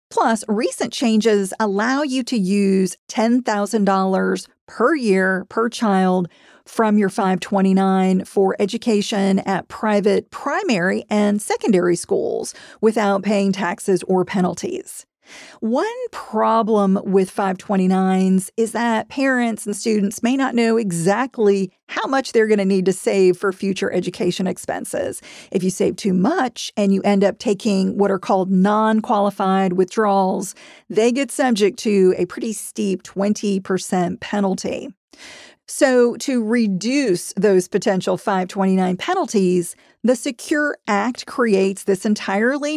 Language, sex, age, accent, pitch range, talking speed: English, female, 40-59, American, 190-235 Hz, 125 wpm